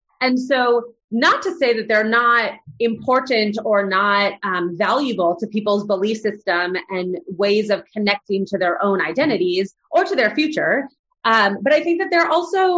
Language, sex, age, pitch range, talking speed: English, female, 30-49, 190-245 Hz, 170 wpm